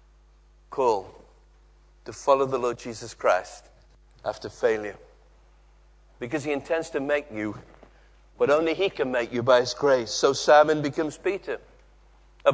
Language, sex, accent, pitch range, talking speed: English, male, British, 110-150 Hz, 140 wpm